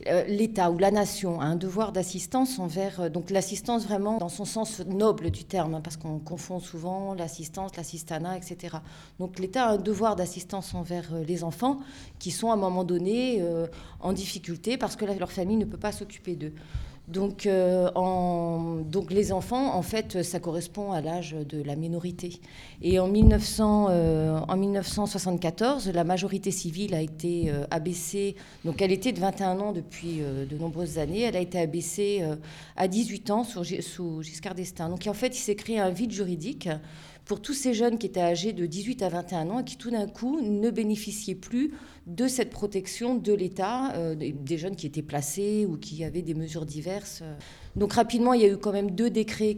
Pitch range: 170-205 Hz